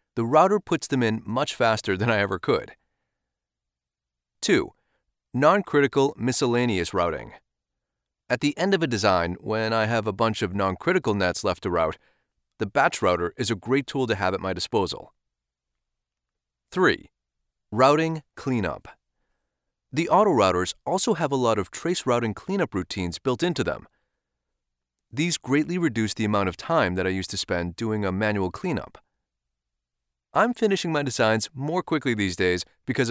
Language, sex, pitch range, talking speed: English, male, 90-145 Hz, 160 wpm